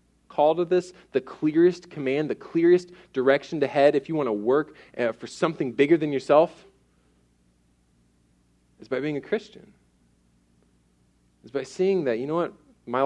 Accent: American